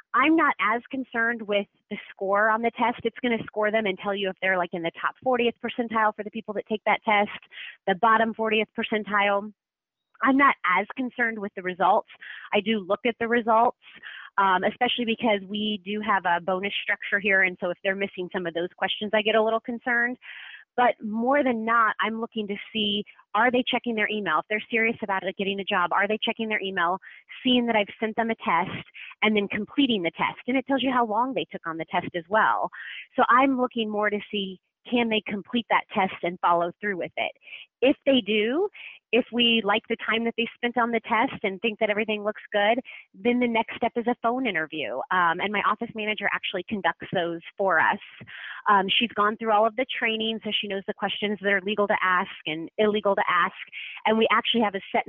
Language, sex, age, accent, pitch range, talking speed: English, female, 30-49, American, 195-230 Hz, 225 wpm